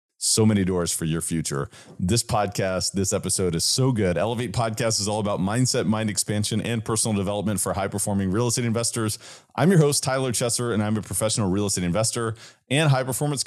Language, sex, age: English, male, 30-49